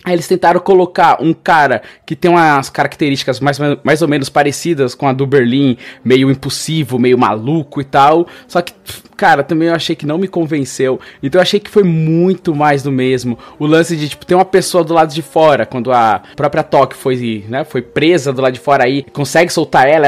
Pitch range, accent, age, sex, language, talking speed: 130-170 Hz, Brazilian, 20-39, male, Portuguese, 210 wpm